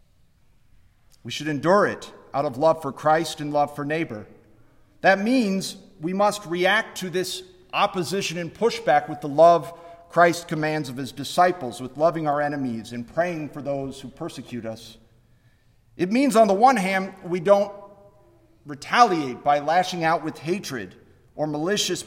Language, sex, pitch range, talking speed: English, male, 125-180 Hz, 160 wpm